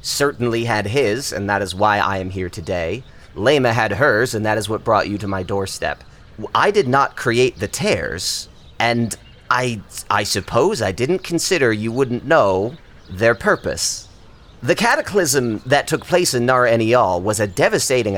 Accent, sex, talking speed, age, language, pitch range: American, male, 170 wpm, 30-49, English, 100-140 Hz